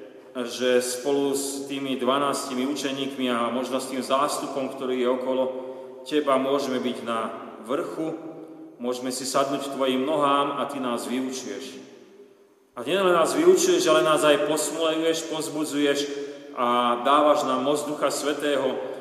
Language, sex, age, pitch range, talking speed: Slovak, male, 30-49, 130-150 Hz, 140 wpm